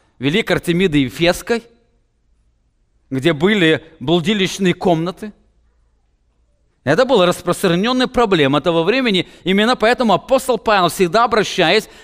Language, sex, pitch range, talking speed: English, male, 165-230 Hz, 100 wpm